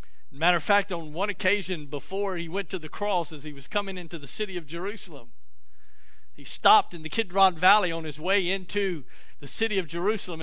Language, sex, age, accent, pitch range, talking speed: English, male, 50-69, American, 145-195 Hz, 200 wpm